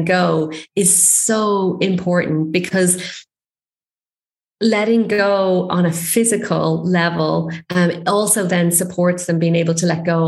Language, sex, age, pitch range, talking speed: English, female, 30-49, 170-200 Hz, 125 wpm